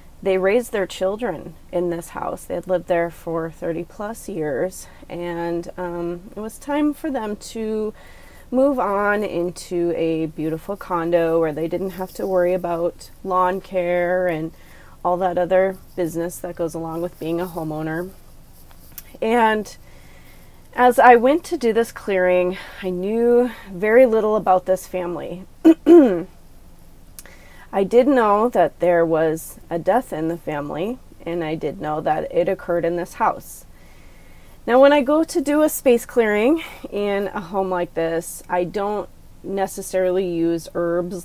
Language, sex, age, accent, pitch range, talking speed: English, female, 30-49, American, 165-205 Hz, 155 wpm